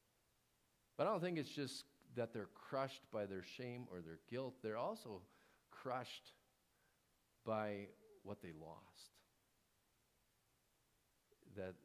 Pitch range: 90-120 Hz